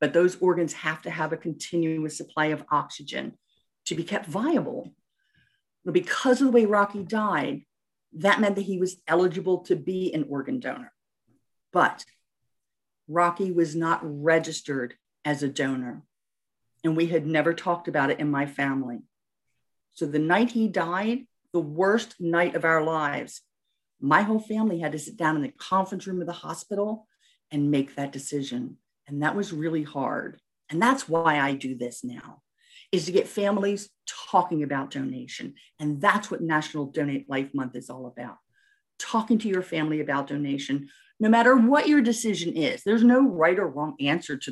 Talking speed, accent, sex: 175 wpm, American, female